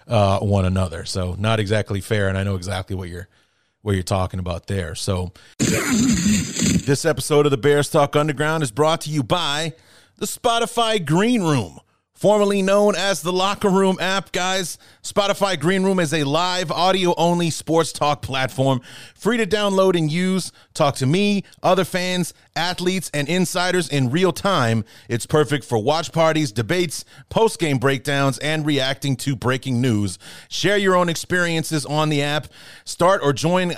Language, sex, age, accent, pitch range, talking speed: English, male, 30-49, American, 135-180 Hz, 165 wpm